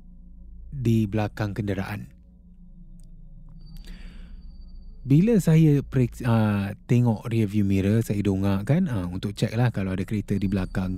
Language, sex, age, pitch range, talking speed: Malay, male, 20-39, 100-140 Hz, 120 wpm